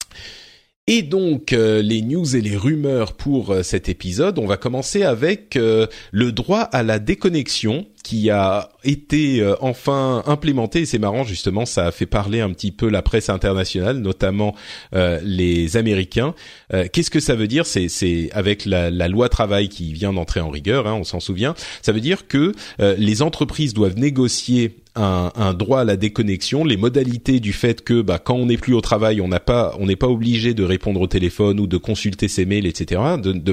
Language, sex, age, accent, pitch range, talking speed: French, male, 30-49, French, 95-130 Hz, 200 wpm